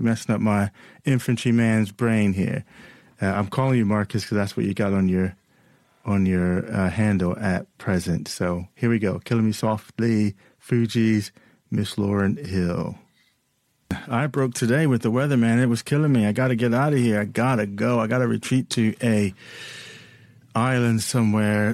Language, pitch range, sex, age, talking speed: English, 100-115 Hz, male, 30-49, 170 wpm